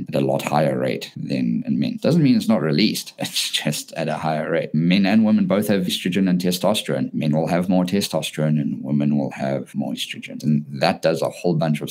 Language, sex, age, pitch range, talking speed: English, male, 50-69, 75-100 Hz, 225 wpm